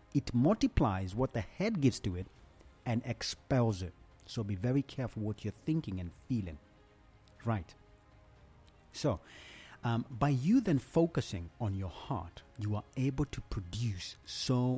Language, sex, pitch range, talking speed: English, male, 105-140 Hz, 145 wpm